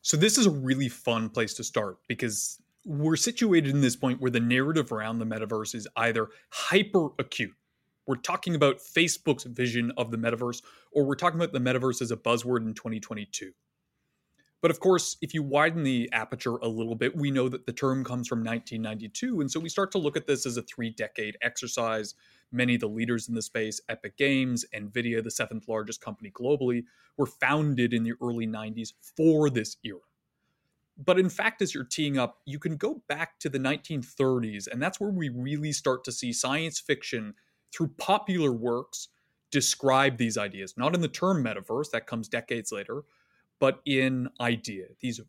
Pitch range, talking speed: 120-160 Hz, 190 wpm